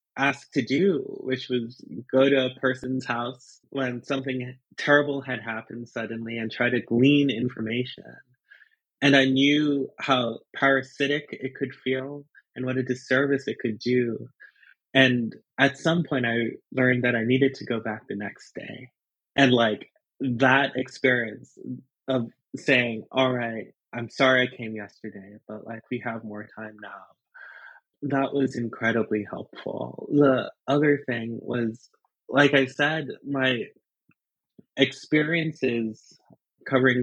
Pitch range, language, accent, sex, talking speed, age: 115-135 Hz, English, American, male, 140 wpm, 20-39